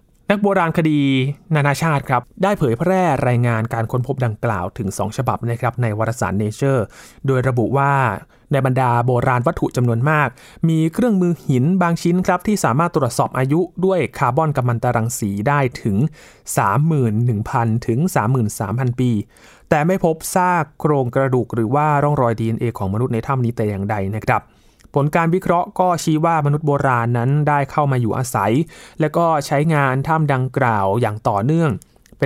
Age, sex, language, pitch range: 20-39, male, Thai, 115-155 Hz